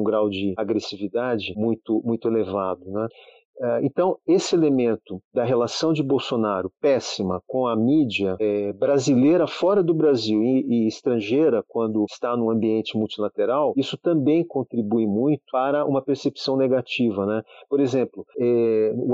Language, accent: Portuguese, Brazilian